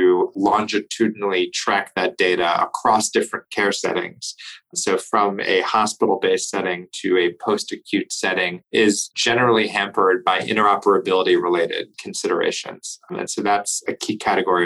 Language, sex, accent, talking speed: English, male, American, 125 wpm